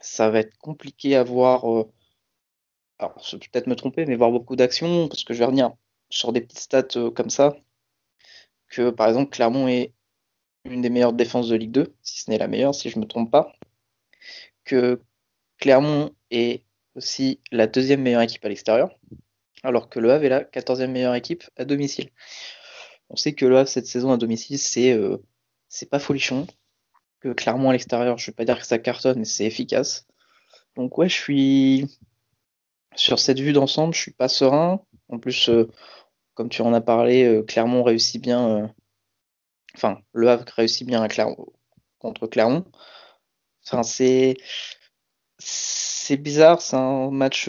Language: French